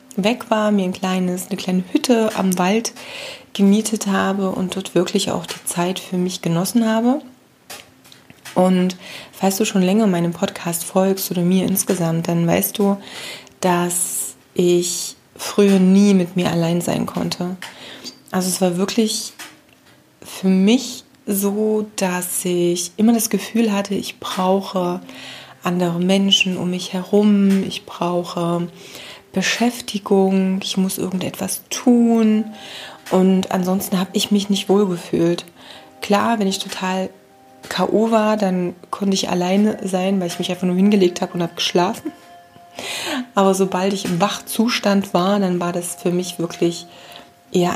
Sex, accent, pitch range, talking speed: female, German, 180-205 Hz, 140 wpm